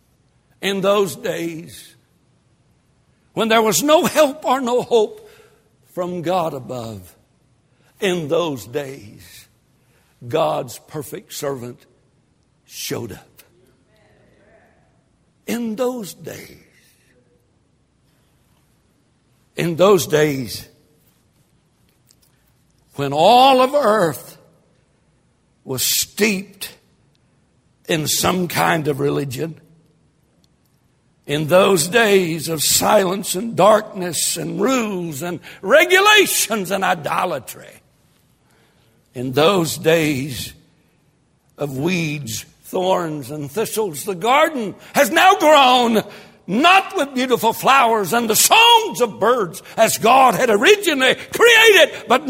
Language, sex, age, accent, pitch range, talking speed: English, male, 60-79, American, 150-245 Hz, 90 wpm